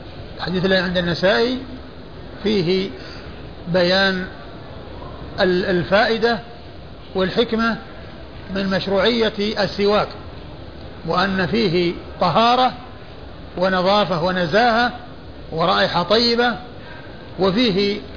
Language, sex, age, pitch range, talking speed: Arabic, male, 50-69, 175-215 Hz, 65 wpm